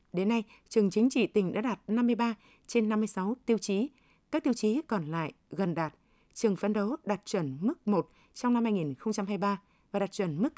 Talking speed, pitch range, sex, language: 195 wpm, 185-235 Hz, female, Vietnamese